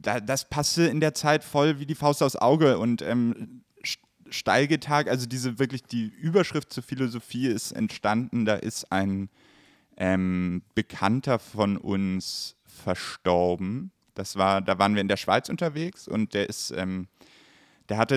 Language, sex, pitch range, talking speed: German, male, 100-125 Hz, 150 wpm